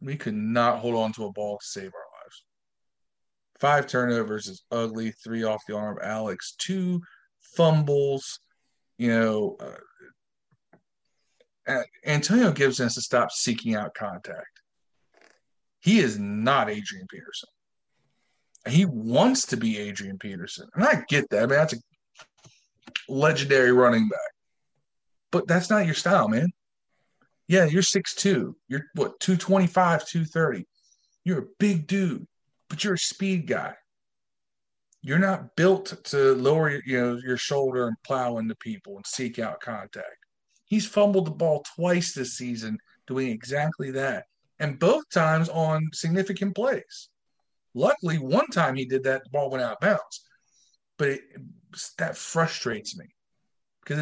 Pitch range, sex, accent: 125-185 Hz, male, American